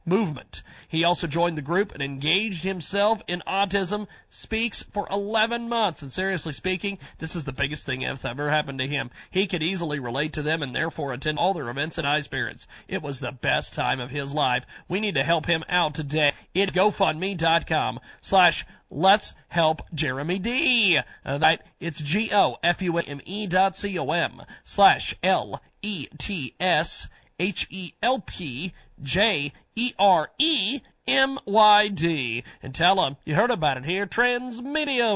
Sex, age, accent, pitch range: male, 40-59, American, 150-195 Hz